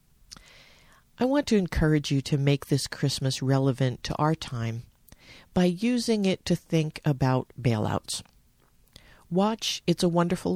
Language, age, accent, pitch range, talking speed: English, 50-69, American, 120-175 Hz, 135 wpm